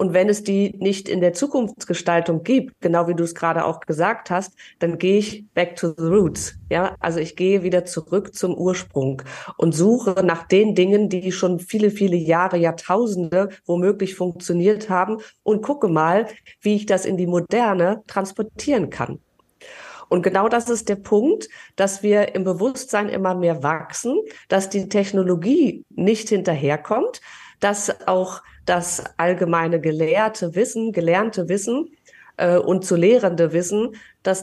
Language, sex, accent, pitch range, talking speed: German, female, German, 170-205 Hz, 155 wpm